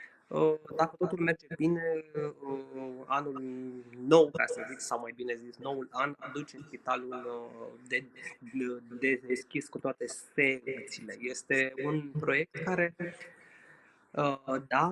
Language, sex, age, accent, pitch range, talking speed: Romanian, male, 20-39, native, 130-160 Hz, 115 wpm